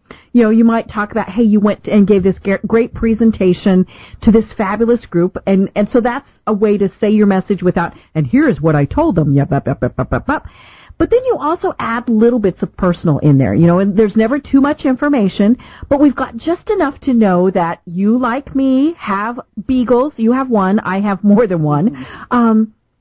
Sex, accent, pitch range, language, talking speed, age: female, American, 190-250 Hz, English, 200 wpm, 50-69